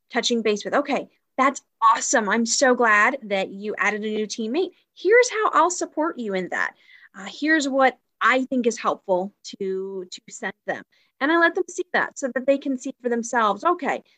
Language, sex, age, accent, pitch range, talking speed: English, female, 30-49, American, 215-295 Hz, 200 wpm